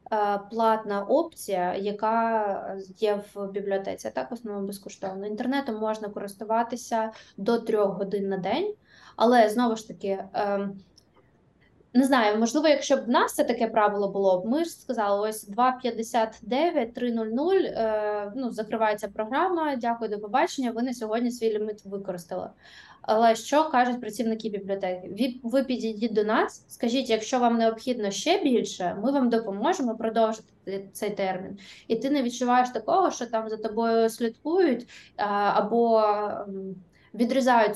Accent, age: native, 20-39